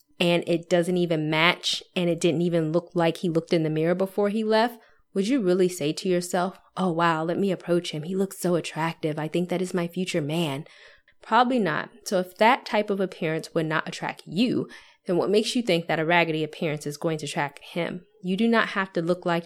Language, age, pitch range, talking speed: English, 20-39, 165-195 Hz, 230 wpm